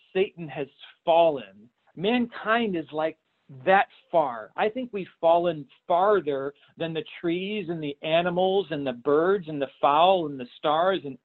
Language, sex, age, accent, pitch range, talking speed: English, male, 40-59, American, 140-195 Hz, 155 wpm